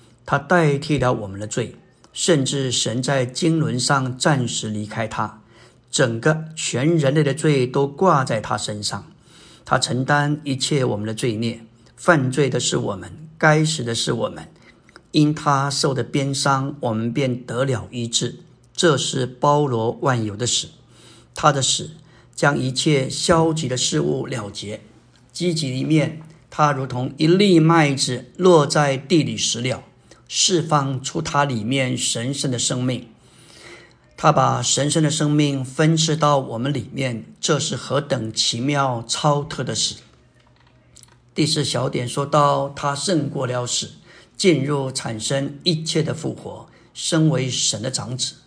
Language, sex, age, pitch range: Chinese, male, 50-69, 125-155 Hz